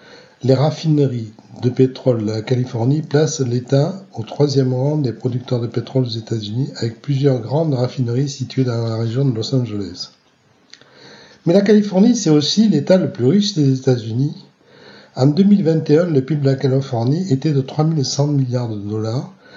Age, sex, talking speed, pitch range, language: 60-79, male, 165 wpm, 125-150 Hz, French